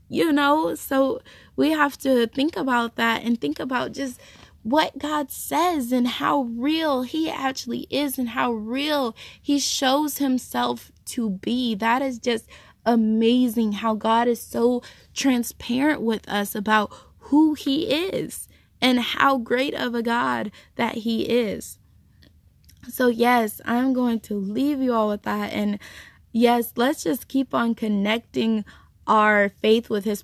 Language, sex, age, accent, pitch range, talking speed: English, female, 10-29, American, 215-270 Hz, 150 wpm